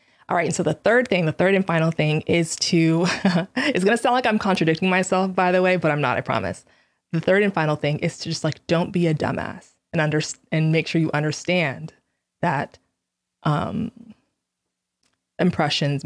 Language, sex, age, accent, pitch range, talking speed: English, female, 20-39, American, 155-180 Hz, 195 wpm